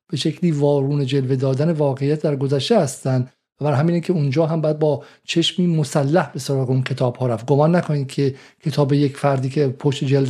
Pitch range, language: 135-160 Hz, Persian